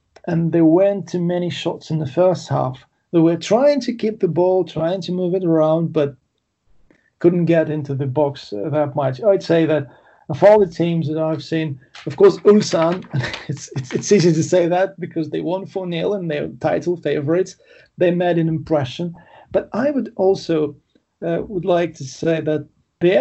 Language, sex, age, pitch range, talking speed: English, male, 40-59, 150-180 Hz, 190 wpm